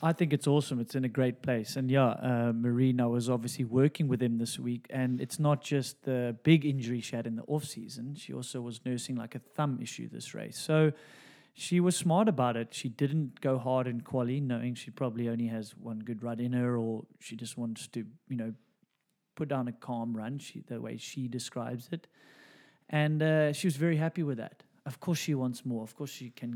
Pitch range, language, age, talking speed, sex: 125-145 Hz, English, 30-49, 220 wpm, male